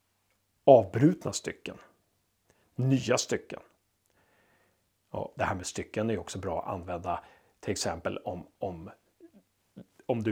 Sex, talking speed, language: male, 115 wpm, Swedish